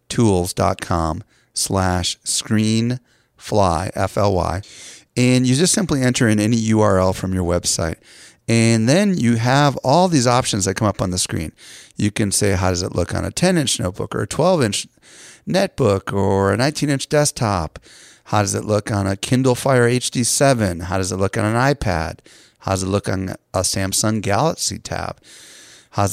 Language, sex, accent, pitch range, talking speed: English, male, American, 95-125 Hz, 175 wpm